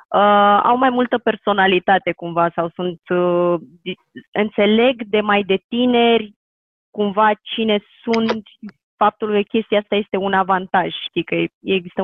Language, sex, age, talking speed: Romanian, female, 20-39, 125 wpm